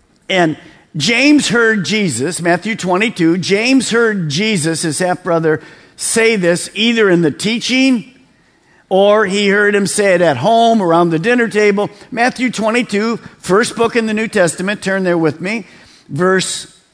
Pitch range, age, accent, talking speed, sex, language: 175-225 Hz, 50-69, American, 150 wpm, male, English